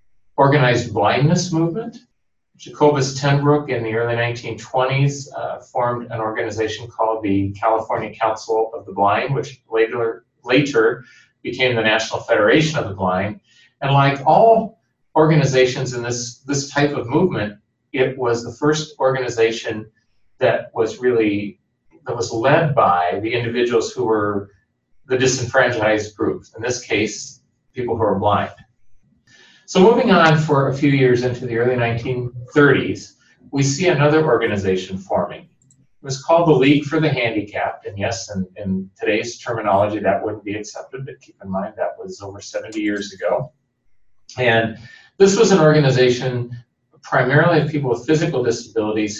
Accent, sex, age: American, male, 40-59